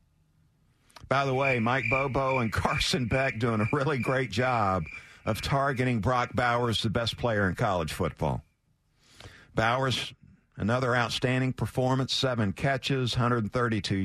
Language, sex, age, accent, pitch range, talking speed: English, male, 50-69, American, 110-150 Hz, 130 wpm